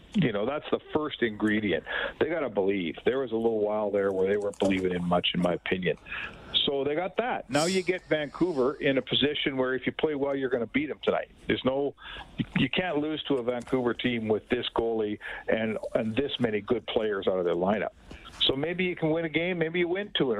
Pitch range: 120-170 Hz